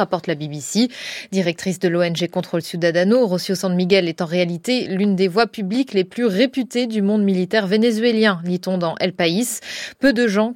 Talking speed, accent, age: 180 wpm, French, 20-39